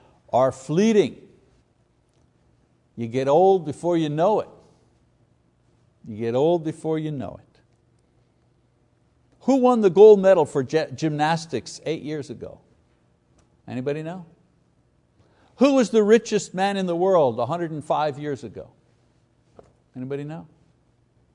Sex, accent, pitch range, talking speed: male, American, 135-185 Hz, 120 wpm